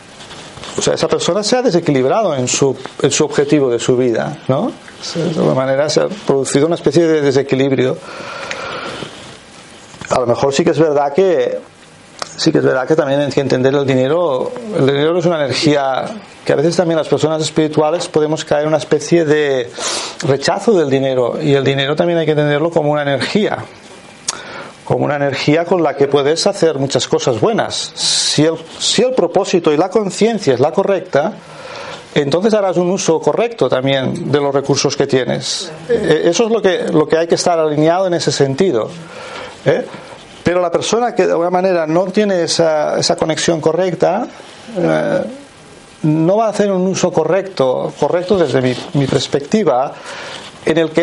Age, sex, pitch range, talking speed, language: 40-59, male, 140-185 Hz, 180 wpm, Spanish